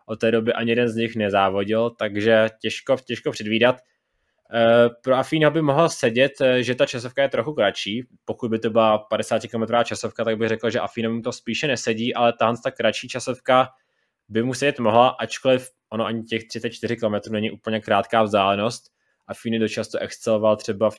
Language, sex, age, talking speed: Czech, male, 20-39, 180 wpm